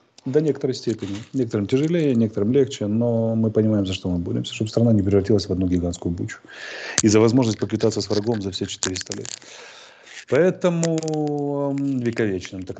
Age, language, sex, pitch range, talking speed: 30-49, Russian, male, 95-130 Hz, 165 wpm